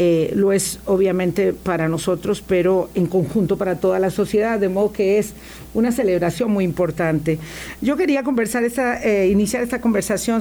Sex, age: female, 50-69